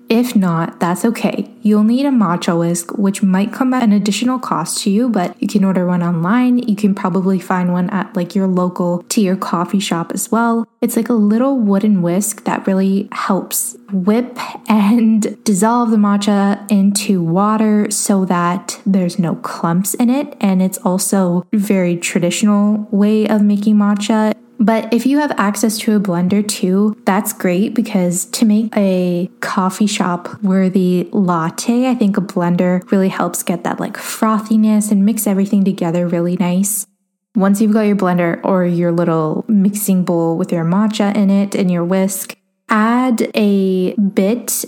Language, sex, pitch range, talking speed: English, female, 185-220 Hz, 170 wpm